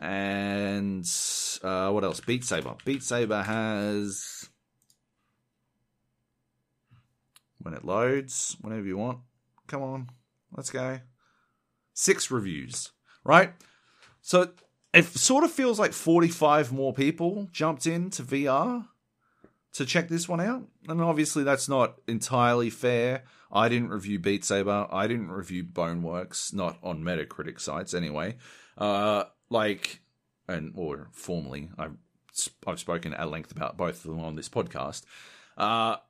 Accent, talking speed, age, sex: Australian, 130 wpm, 30-49, male